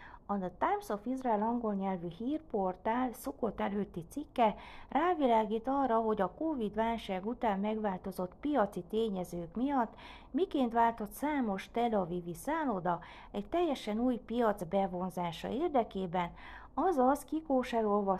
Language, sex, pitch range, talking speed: Hungarian, female, 185-245 Hz, 115 wpm